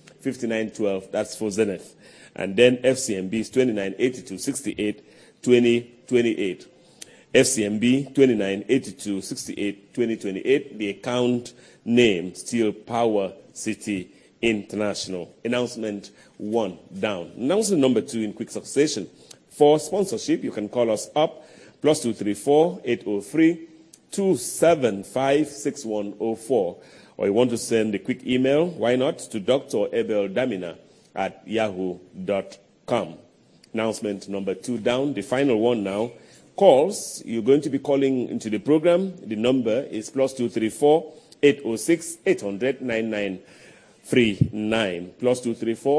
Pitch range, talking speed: 105-140 Hz, 100 wpm